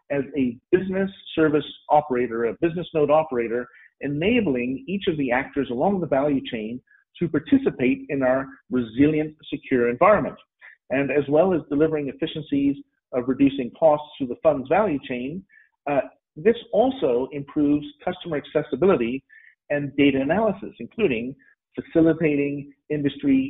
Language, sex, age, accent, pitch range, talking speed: English, male, 50-69, American, 130-165 Hz, 130 wpm